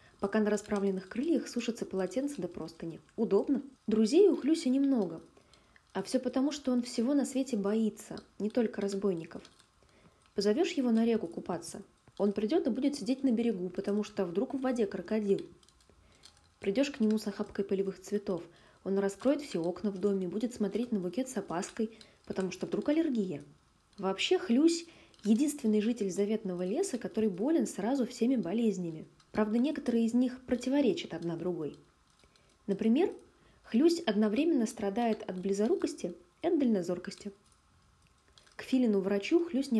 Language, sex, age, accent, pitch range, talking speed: Russian, female, 20-39, native, 195-255 Hz, 145 wpm